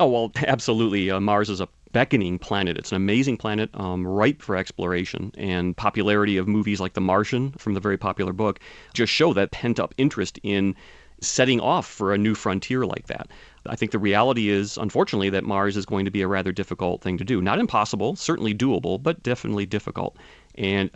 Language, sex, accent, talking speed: English, male, American, 200 wpm